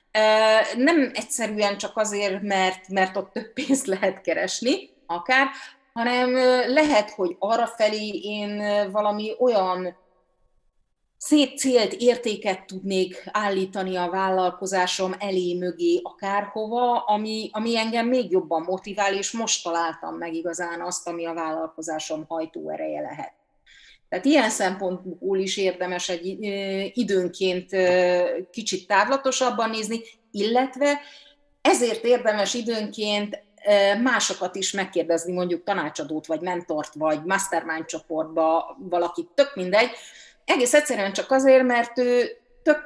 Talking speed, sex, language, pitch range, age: 110 wpm, female, Hungarian, 180-235 Hz, 30-49